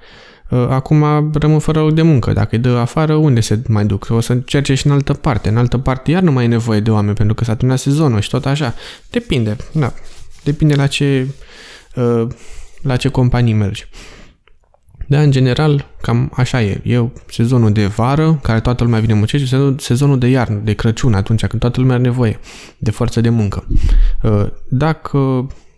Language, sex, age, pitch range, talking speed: Romanian, male, 20-39, 110-140 Hz, 185 wpm